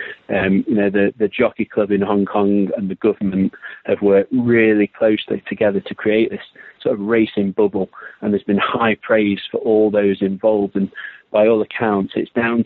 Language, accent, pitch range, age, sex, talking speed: English, British, 100-110 Hz, 40-59, male, 190 wpm